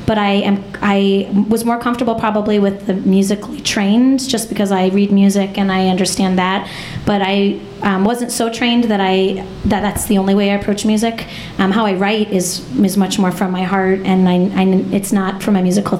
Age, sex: 30-49, female